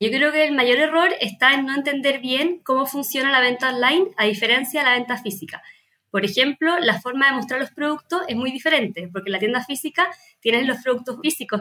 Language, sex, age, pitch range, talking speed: Spanish, female, 20-39, 225-275 Hz, 215 wpm